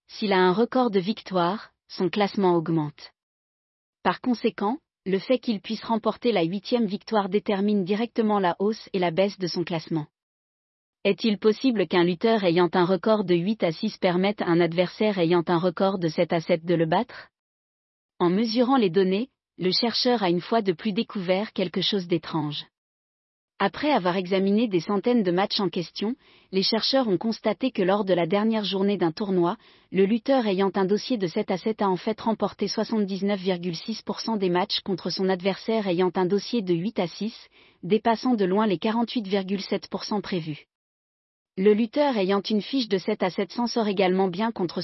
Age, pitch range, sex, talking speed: 40-59, 180-220 Hz, female, 180 wpm